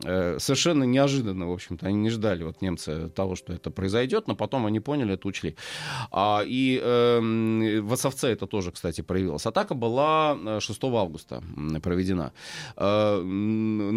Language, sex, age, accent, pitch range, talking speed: Russian, male, 30-49, native, 95-130 Hz, 145 wpm